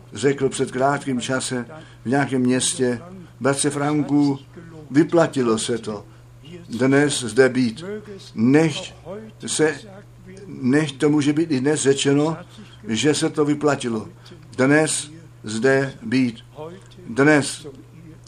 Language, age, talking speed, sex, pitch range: Czech, 60-79, 100 wpm, male, 120-150 Hz